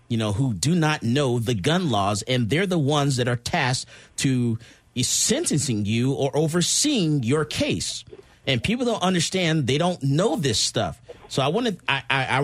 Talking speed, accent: 165 wpm, American